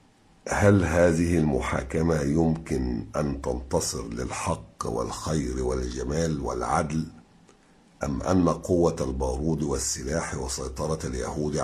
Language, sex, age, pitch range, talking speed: Arabic, male, 50-69, 70-85 Hz, 90 wpm